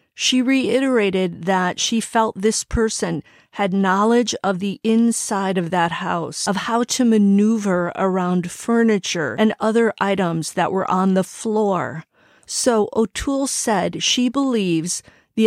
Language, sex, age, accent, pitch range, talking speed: English, female, 40-59, American, 190-225 Hz, 135 wpm